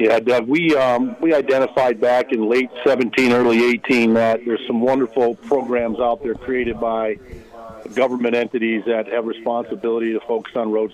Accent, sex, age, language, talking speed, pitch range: American, male, 50-69, English, 165 wpm, 115-130 Hz